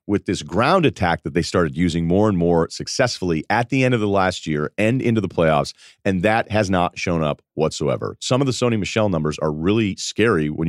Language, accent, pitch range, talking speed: English, American, 90-125 Hz, 225 wpm